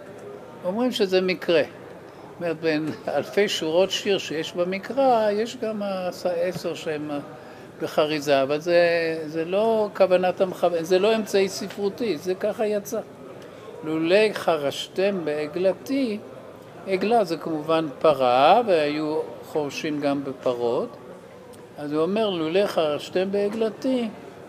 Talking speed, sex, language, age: 115 wpm, male, Hebrew, 60-79